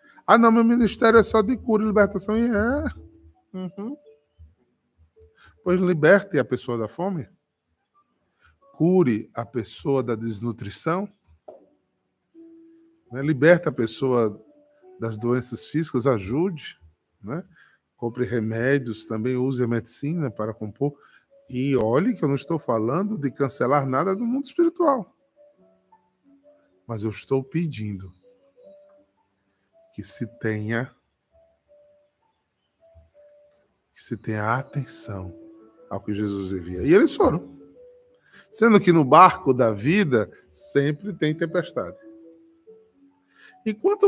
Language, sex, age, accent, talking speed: Portuguese, male, 20-39, Brazilian, 110 wpm